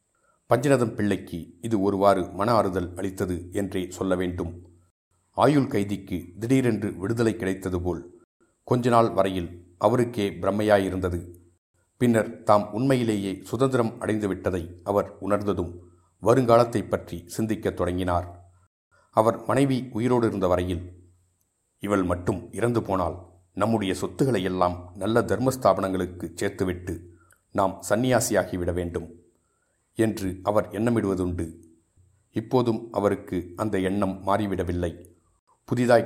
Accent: native